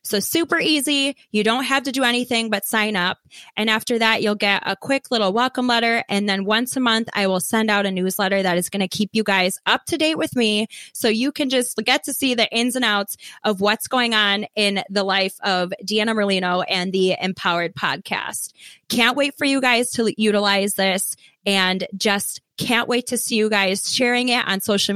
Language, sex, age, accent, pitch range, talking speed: English, female, 20-39, American, 190-235 Hz, 215 wpm